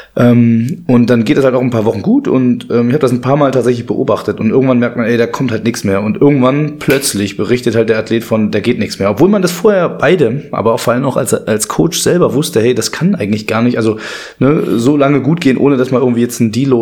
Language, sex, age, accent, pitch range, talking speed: German, male, 20-39, German, 110-130 Hz, 270 wpm